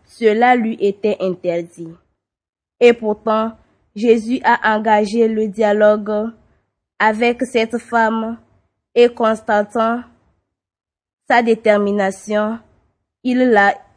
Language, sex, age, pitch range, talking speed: French, female, 20-39, 200-230 Hz, 85 wpm